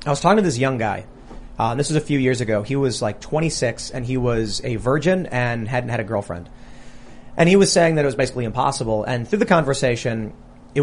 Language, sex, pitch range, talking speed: English, male, 120-150 Hz, 235 wpm